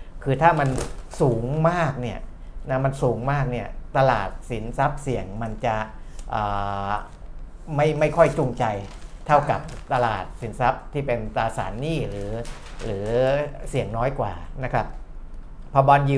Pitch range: 115-140 Hz